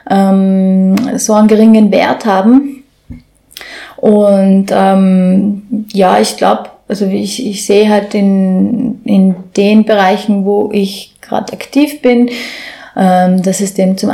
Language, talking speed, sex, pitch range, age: German, 125 wpm, female, 195-230 Hz, 30-49